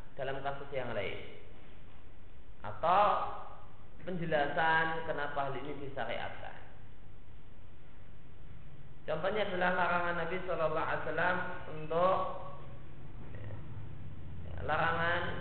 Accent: native